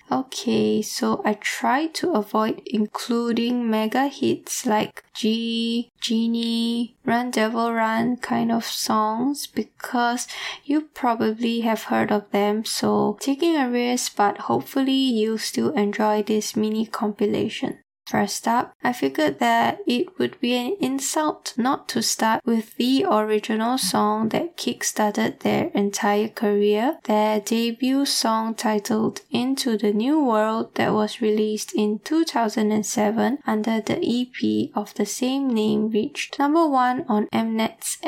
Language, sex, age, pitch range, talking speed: English, female, 10-29, 215-260 Hz, 130 wpm